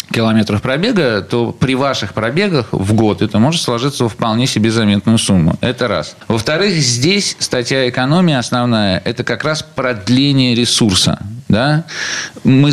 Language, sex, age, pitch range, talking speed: Russian, male, 40-59, 100-140 Hz, 140 wpm